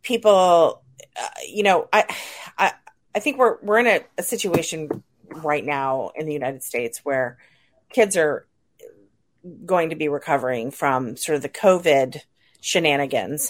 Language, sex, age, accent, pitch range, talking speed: English, female, 30-49, American, 140-175 Hz, 145 wpm